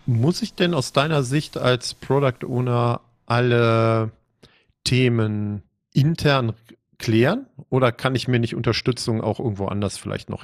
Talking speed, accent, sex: 130 wpm, German, male